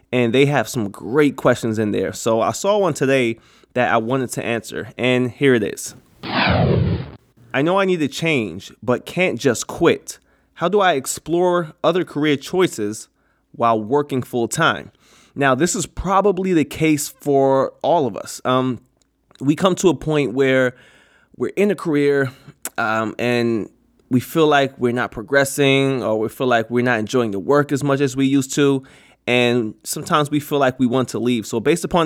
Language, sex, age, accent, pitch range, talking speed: English, male, 20-39, American, 120-145 Hz, 185 wpm